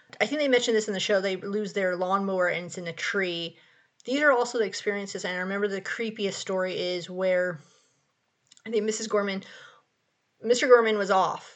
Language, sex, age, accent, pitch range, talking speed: English, female, 30-49, American, 185-220 Hz, 195 wpm